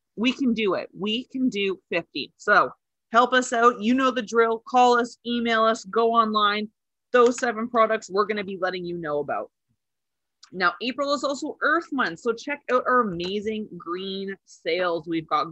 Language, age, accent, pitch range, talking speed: English, 20-39, American, 185-245 Hz, 185 wpm